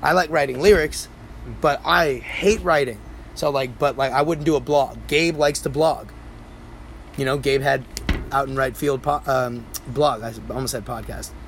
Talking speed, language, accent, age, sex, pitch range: 190 wpm, English, American, 20-39, male, 120-150 Hz